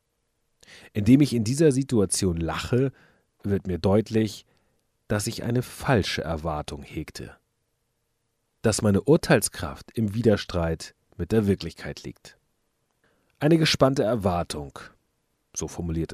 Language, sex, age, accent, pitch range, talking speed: German, male, 40-59, German, 90-115 Hz, 110 wpm